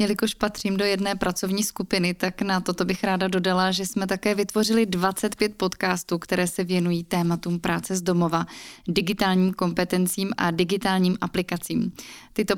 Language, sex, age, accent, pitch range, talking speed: Czech, female, 20-39, native, 180-210 Hz, 150 wpm